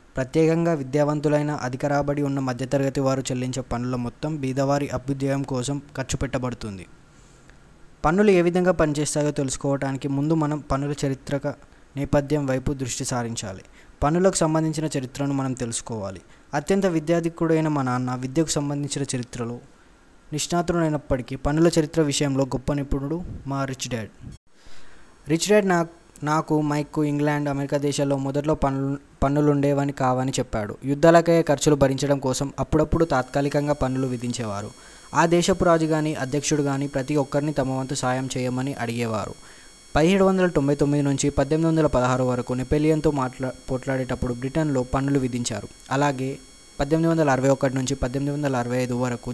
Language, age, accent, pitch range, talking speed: Telugu, 20-39, native, 130-150 Hz, 115 wpm